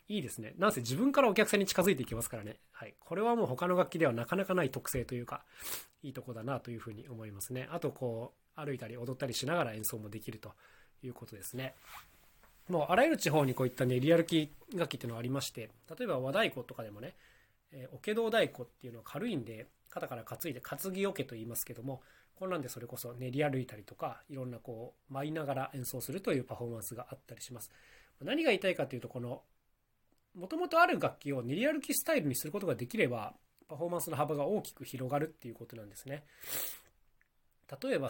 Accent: native